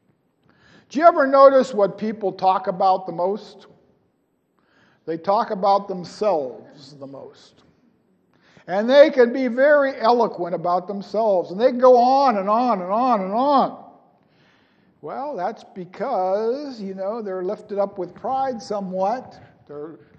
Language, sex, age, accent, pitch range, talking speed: English, male, 50-69, American, 190-245 Hz, 140 wpm